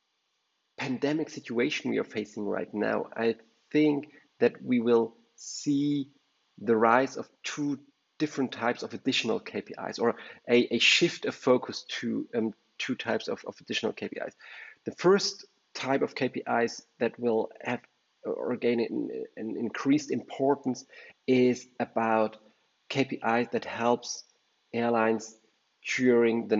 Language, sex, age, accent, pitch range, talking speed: English, male, 30-49, German, 110-130 Hz, 130 wpm